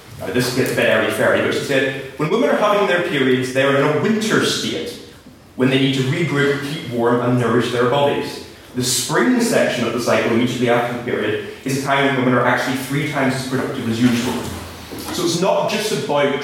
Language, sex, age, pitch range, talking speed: English, male, 20-39, 125-150 Hz, 220 wpm